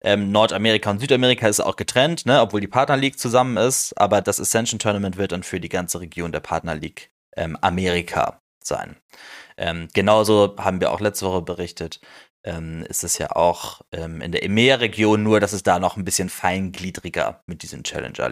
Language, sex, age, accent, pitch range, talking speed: German, male, 20-39, German, 95-120 Hz, 190 wpm